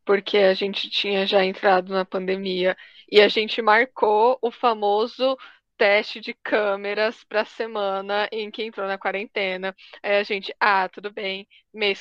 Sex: female